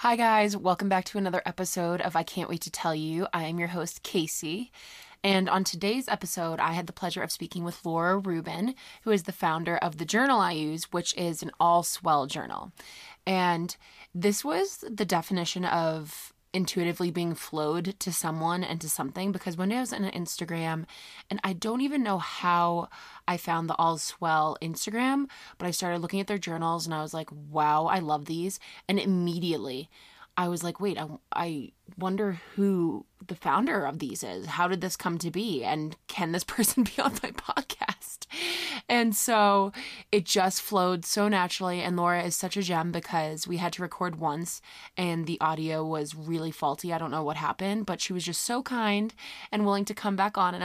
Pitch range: 165-200 Hz